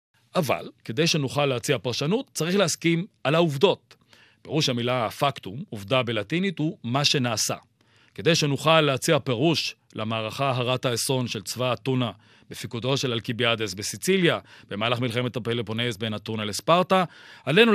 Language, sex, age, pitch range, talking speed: Hebrew, male, 40-59, 120-170 Hz, 130 wpm